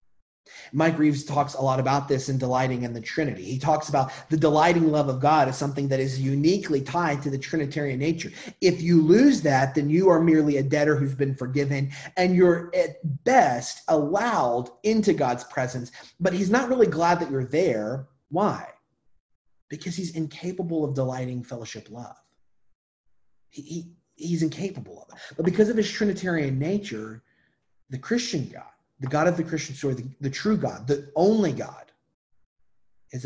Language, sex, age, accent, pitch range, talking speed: English, male, 30-49, American, 120-160 Hz, 170 wpm